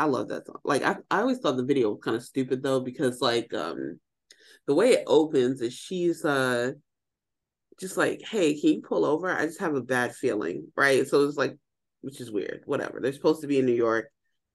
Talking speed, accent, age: 225 wpm, American, 30-49